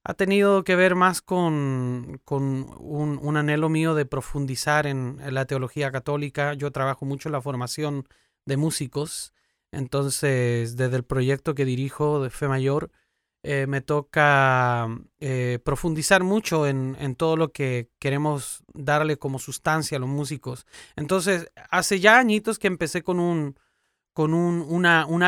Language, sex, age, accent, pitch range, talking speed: Spanish, male, 30-49, Mexican, 135-160 Hz, 150 wpm